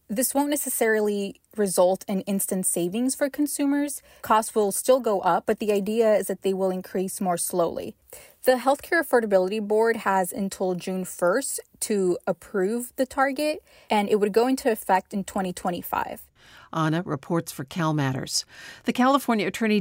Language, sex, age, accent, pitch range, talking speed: English, female, 40-59, American, 185-230 Hz, 155 wpm